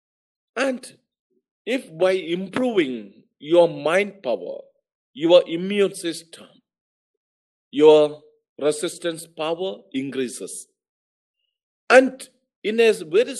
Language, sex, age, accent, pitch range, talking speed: English, male, 50-69, Indian, 160-255 Hz, 80 wpm